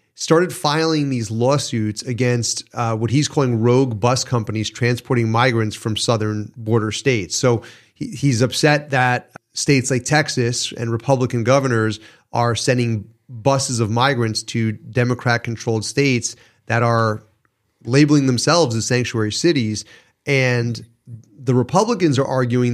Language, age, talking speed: English, 30-49, 125 wpm